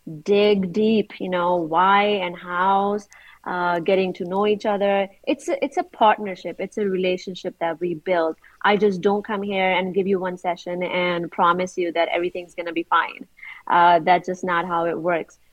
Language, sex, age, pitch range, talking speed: English, female, 30-49, 180-230 Hz, 195 wpm